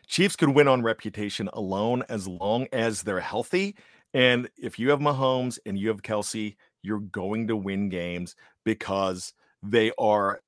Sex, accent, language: male, American, English